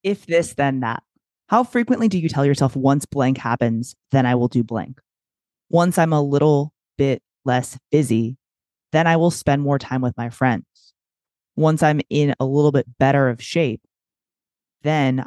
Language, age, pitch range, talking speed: English, 20-39, 125-150 Hz, 175 wpm